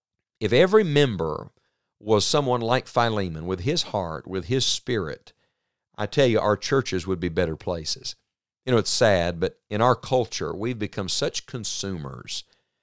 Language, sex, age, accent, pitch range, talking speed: English, male, 50-69, American, 100-140 Hz, 160 wpm